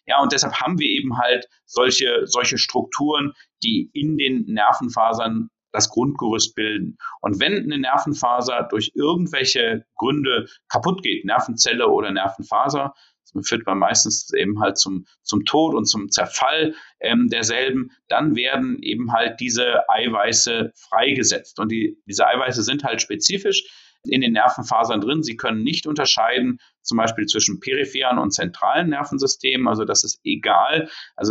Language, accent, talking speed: German, German, 145 wpm